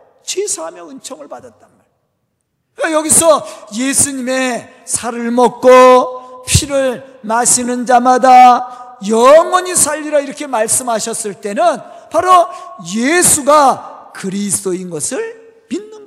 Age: 40-59